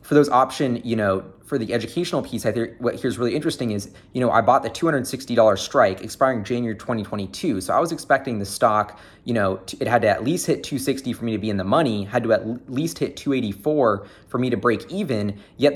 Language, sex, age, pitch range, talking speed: English, male, 20-39, 105-135 Hz, 230 wpm